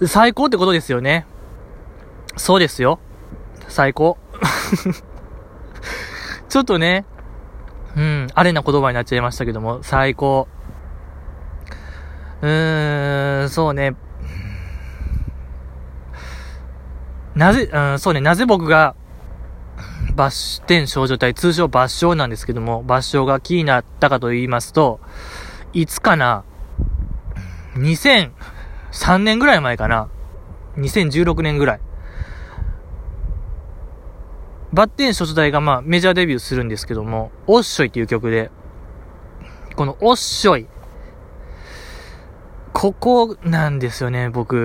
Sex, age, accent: male, 20-39, native